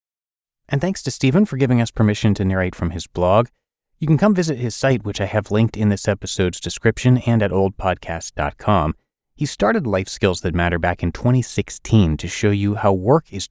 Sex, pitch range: male, 90-125 Hz